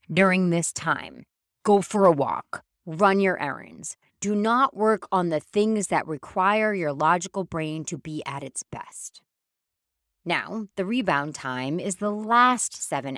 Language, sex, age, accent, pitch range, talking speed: English, female, 30-49, American, 150-210 Hz, 155 wpm